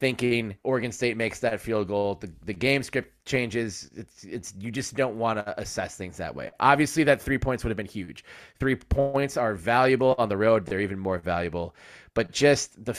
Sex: male